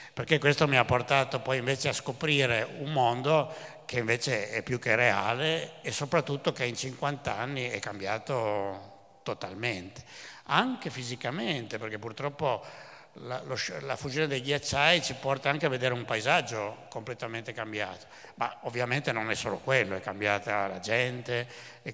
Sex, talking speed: male, 155 wpm